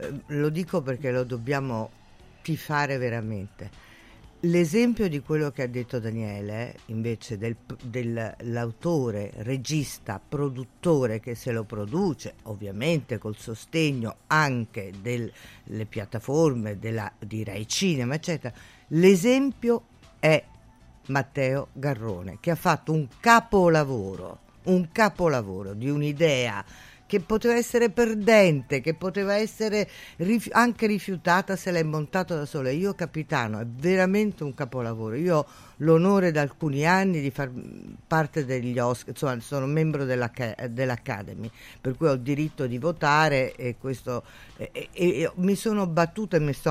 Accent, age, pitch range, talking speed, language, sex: native, 50-69, 115-170 Hz, 125 wpm, Italian, female